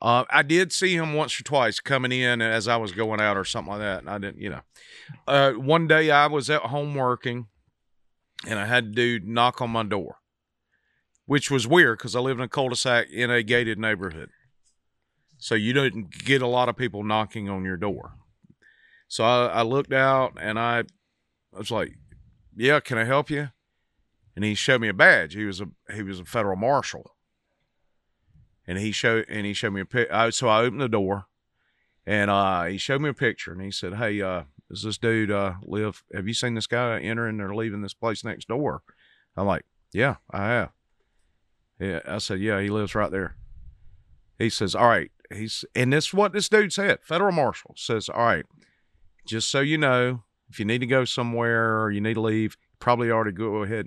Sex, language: male, English